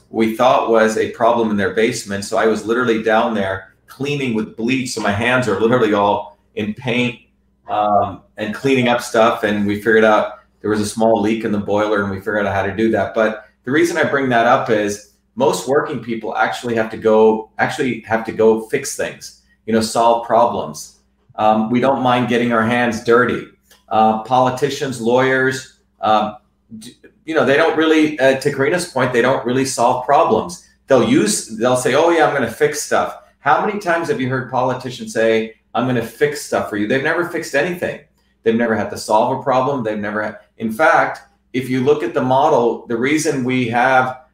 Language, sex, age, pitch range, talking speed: English, male, 40-59, 110-130 Hz, 210 wpm